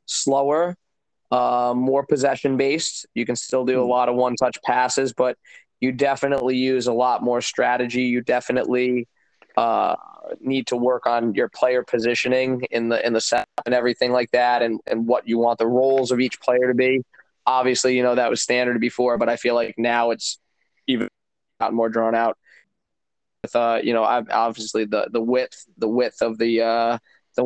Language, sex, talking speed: English, male, 190 wpm